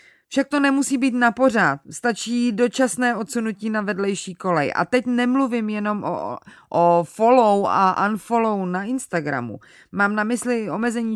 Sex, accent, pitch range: female, native, 175-225 Hz